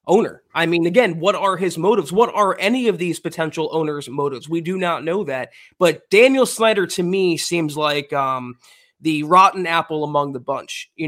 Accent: American